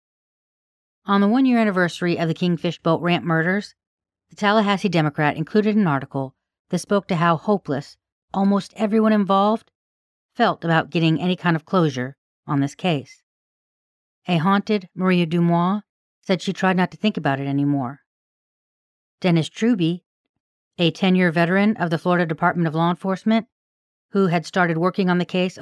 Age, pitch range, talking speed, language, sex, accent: 40-59, 150-185 Hz, 155 wpm, English, female, American